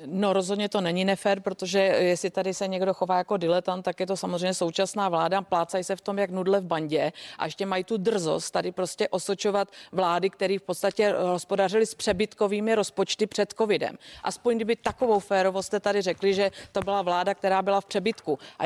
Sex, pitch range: female, 190-220 Hz